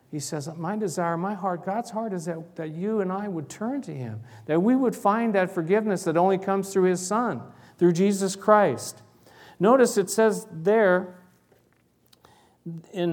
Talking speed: 175 wpm